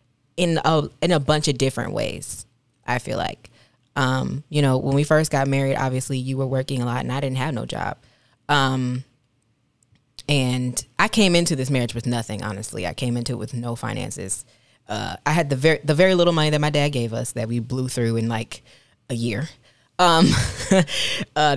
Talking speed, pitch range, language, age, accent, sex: 200 wpm, 120-150 Hz, English, 20-39, American, female